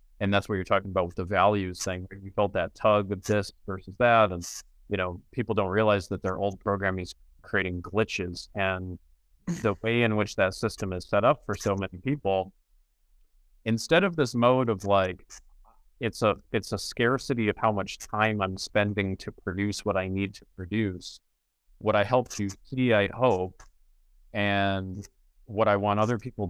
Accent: American